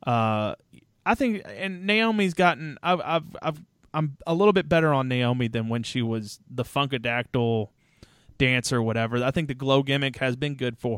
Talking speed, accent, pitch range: 185 wpm, American, 120-150 Hz